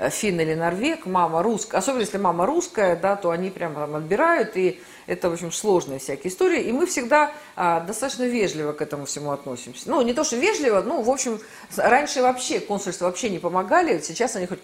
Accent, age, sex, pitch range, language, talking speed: native, 40-59, female, 175-245 Hz, Russian, 200 wpm